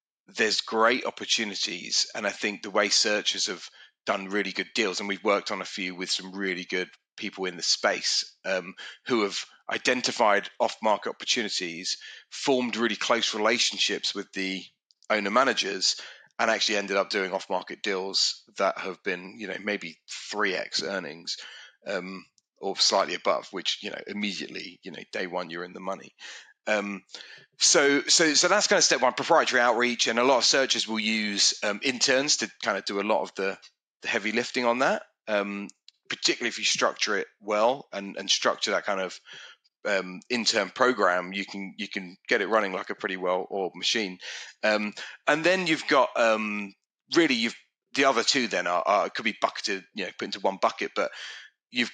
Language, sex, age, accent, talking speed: English, male, 30-49, British, 190 wpm